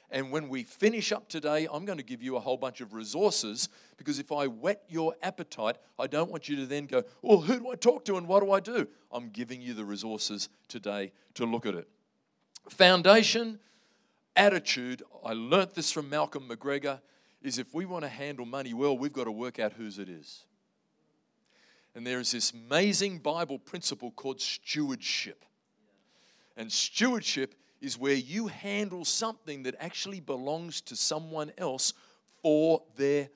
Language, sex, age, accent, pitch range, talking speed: English, male, 40-59, Australian, 140-200 Hz, 175 wpm